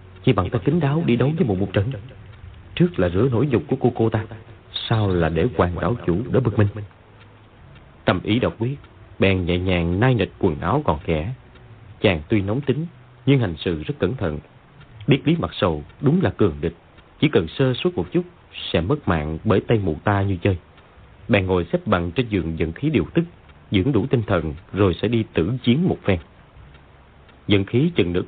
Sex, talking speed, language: male, 210 wpm, Vietnamese